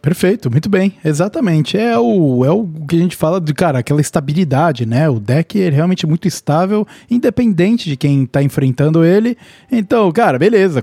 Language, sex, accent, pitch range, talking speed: Portuguese, male, Brazilian, 140-195 Hz, 175 wpm